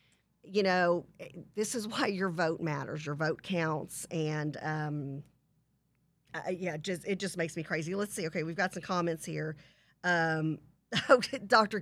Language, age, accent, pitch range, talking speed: English, 50-69, American, 160-200 Hz, 155 wpm